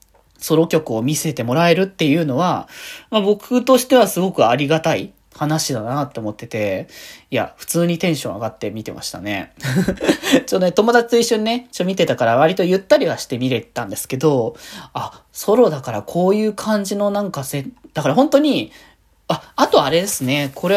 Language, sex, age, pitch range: Japanese, male, 20-39, 140-230 Hz